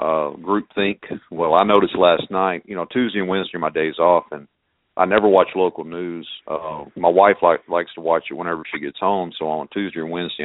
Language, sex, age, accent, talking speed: English, male, 50-69, American, 220 wpm